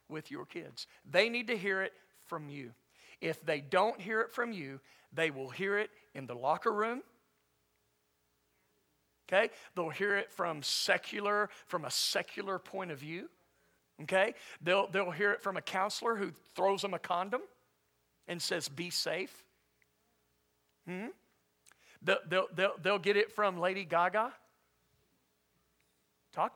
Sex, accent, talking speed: male, American, 145 wpm